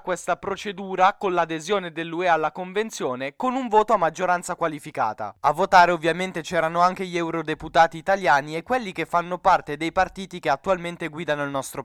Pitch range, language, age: 160-195 Hz, Italian, 20-39